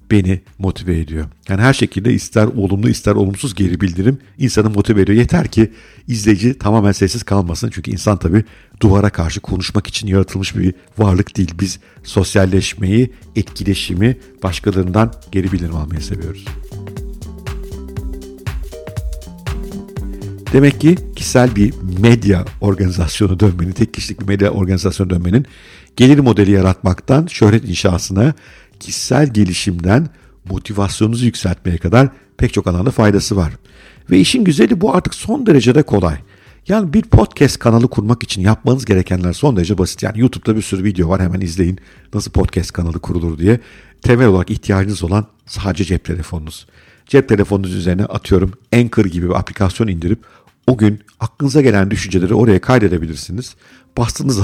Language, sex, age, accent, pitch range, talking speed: Turkish, male, 50-69, native, 95-115 Hz, 135 wpm